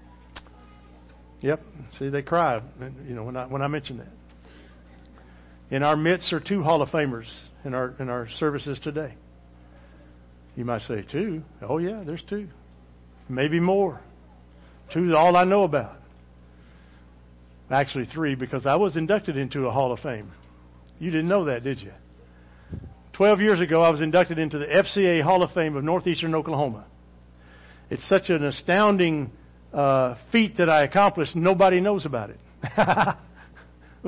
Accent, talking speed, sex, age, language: American, 155 wpm, male, 60-79, English